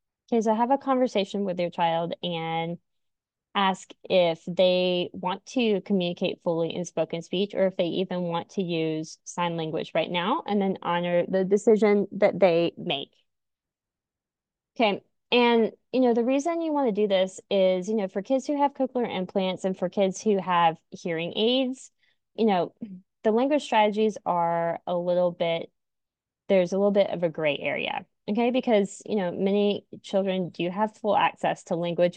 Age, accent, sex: 20-39, American, female